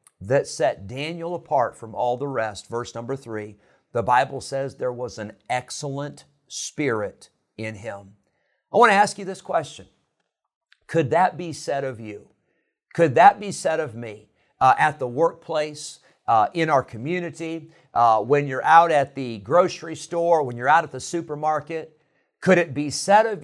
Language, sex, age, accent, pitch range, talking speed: English, male, 50-69, American, 125-170 Hz, 170 wpm